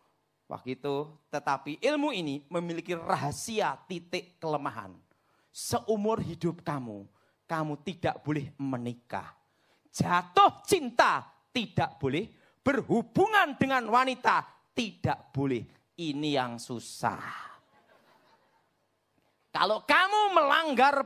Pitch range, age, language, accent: 120-185 Hz, 40-59, Indonesian, native